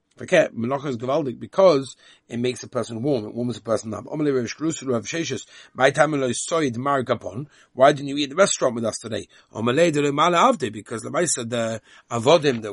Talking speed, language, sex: 110 wpm, English, male